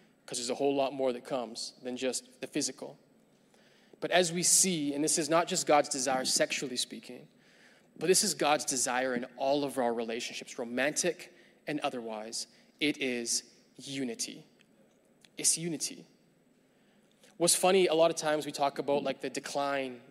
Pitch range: 130-185 Hz